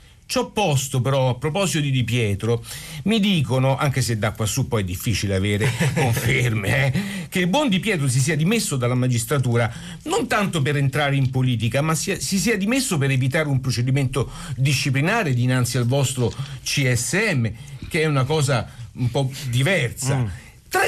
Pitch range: 125-175 Hz